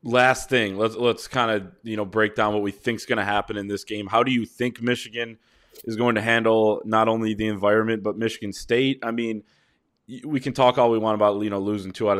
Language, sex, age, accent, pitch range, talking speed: English, male, 20-39, American, 100-115 Hz, 245 wpm